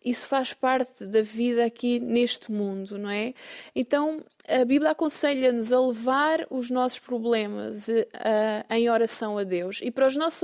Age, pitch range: 20-39, 220-270 Hz